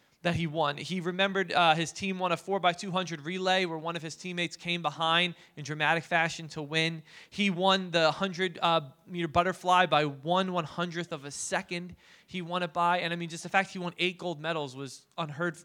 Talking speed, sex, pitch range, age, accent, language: 220 wpm, male, 150-175 Hz, 20-39, American, English